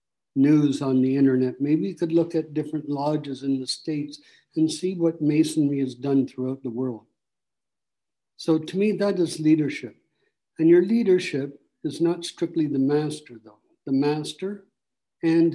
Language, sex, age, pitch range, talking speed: English, male, 60-79, 135-165 Hz, 160 wpm